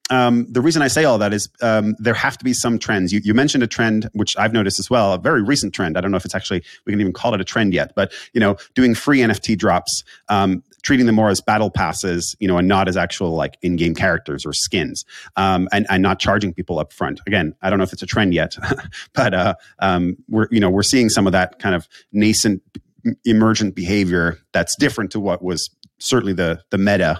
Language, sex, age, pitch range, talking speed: English, male, 30-49, 90-110 Hz, 255 wpm